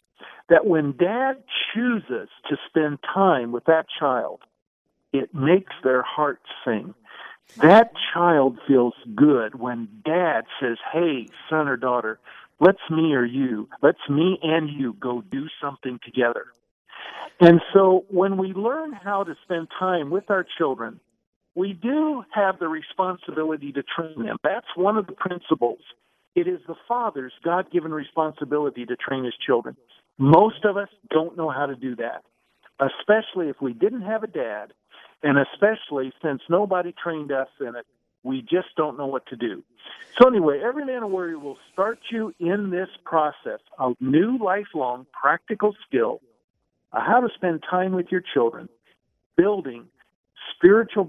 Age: 50-69